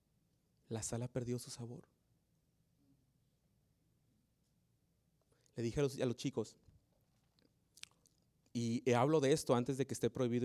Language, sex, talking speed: Spanish, male, 125 wpm